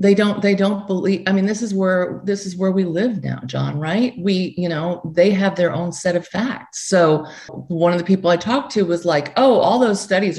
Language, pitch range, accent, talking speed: English, 140-200 Hz, American, 245 wpm